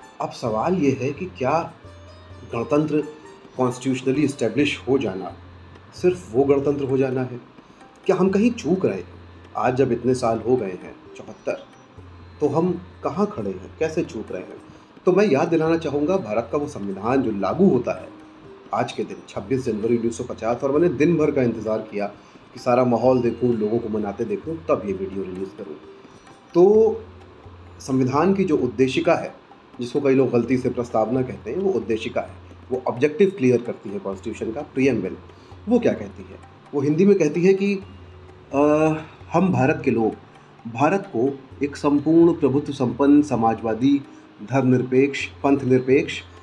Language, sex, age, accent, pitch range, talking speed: Hindi, male, 30-49, native, 110-155 Hz, 165 wpm